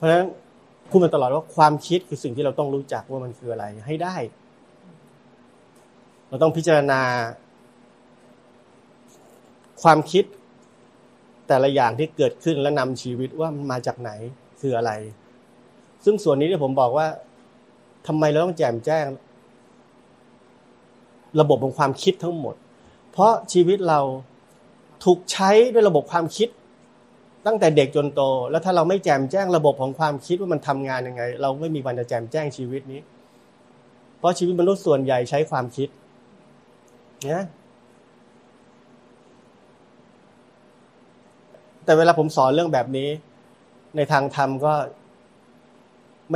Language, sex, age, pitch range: Thai, male, 30-49, 125-165 Hz